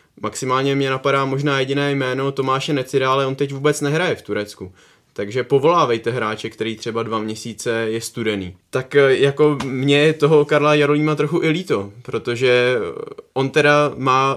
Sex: male